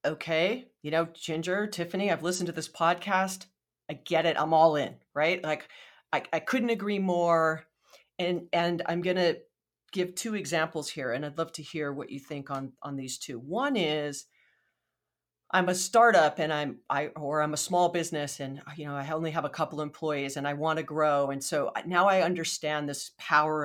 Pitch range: 140-175 Hz